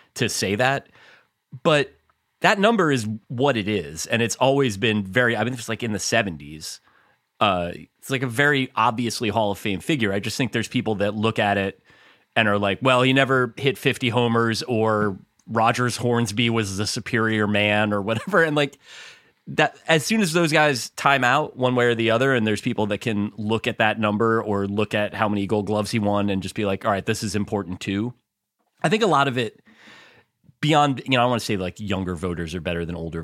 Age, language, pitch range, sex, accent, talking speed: 30-49, English, 100-125 Hz, male, American, 220 wpm